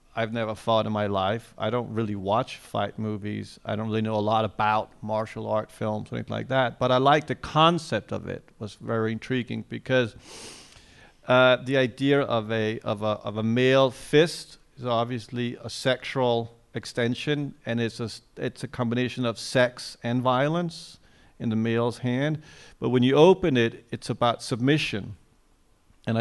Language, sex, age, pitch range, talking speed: English, male, 50-69, 110-130 Hz, 175 wpm